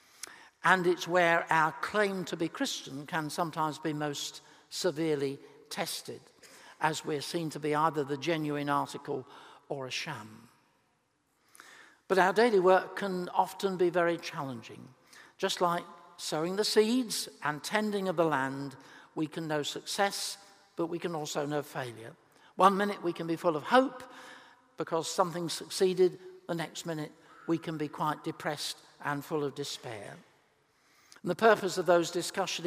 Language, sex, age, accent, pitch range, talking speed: English, male, 60-79, British, 155-195 Hz, 150 wpm